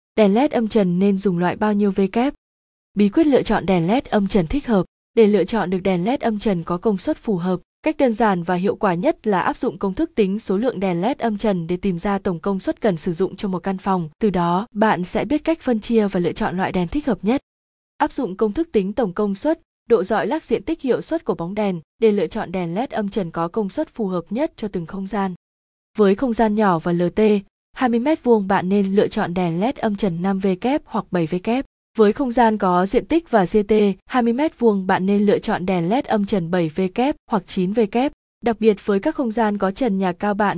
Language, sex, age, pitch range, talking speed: Vietnamese, female, 20-39, 190-235 Hz, 255 wpm